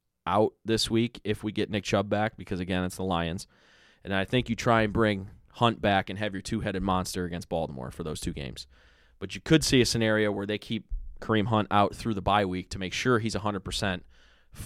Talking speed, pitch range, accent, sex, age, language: 225 wpm, 95-125 Hz, American, male, 20-39, English